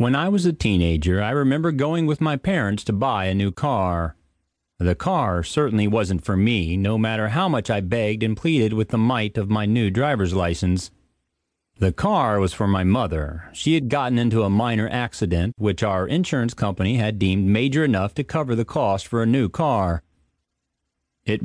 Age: 40-59